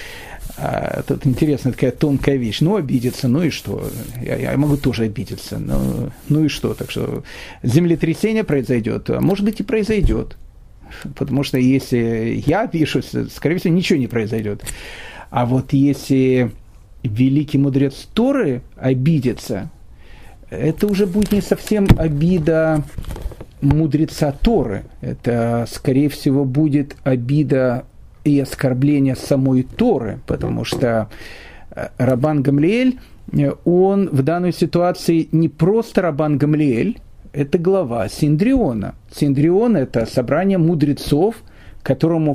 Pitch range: 125-165 Hz